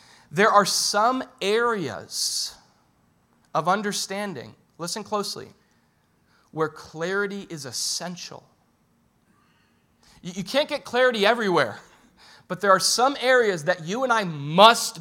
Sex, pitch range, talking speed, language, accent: male, 160-205 Hz, 110 wpm, English, American